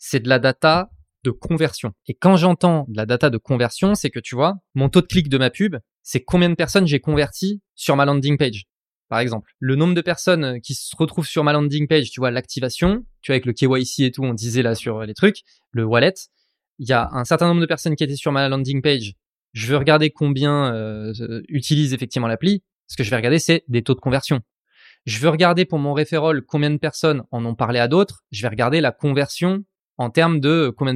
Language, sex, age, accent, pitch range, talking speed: French, male, 20-39, French, 125-165 Hz, 235 wpm